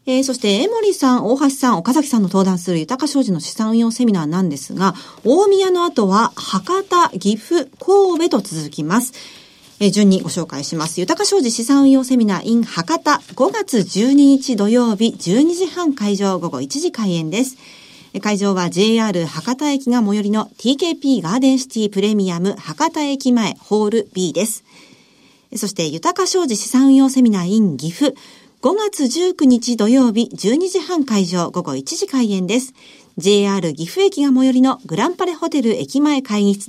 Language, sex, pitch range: Japanese, female, 195-275 Hz